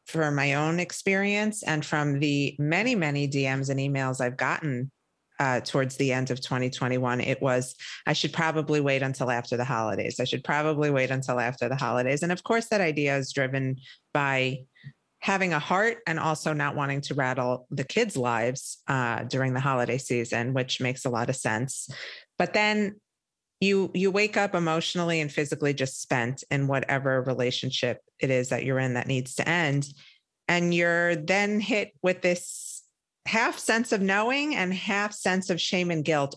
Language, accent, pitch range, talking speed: English, American, 130-180 Hz, 180 wpm